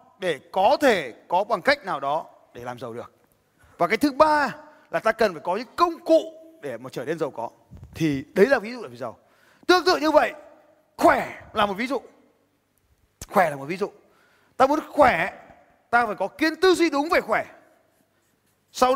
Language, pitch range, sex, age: Vietnamese, 235-330 Hz, male, 20-39